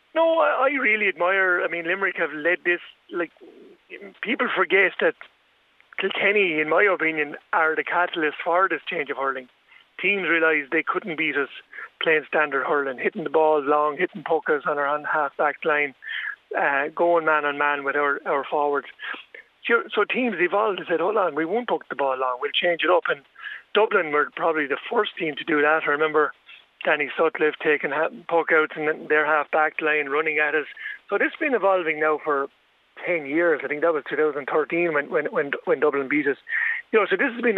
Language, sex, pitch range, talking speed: English, male, 150-195 Hz, 205 wpm